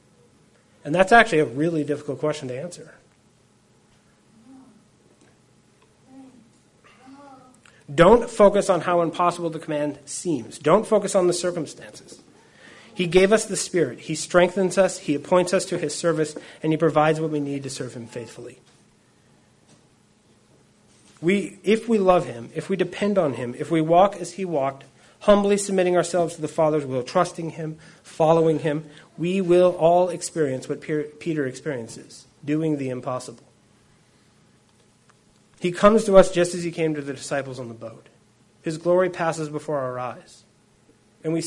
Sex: male